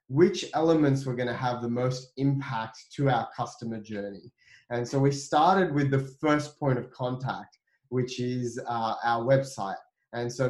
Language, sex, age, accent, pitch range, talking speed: English, male, 20-39, Australian, 115-140 Hz, 165 wpm